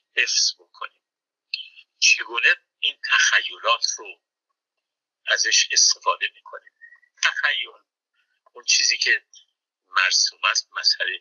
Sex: male